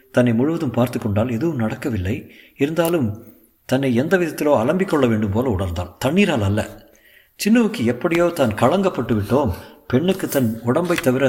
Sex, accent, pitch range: male, native, 115-145 Hz